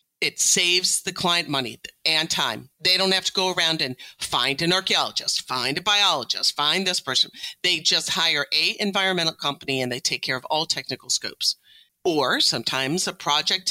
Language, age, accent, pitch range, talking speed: English, 40-59, American, 135-175 Hz, 180 wpm